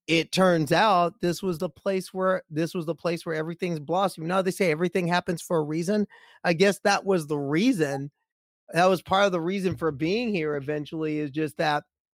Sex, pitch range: male, 150-180 Hz